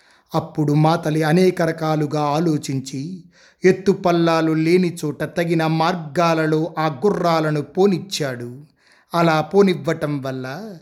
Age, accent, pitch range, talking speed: 30-49, native, 145-170 Hz, 90 wpm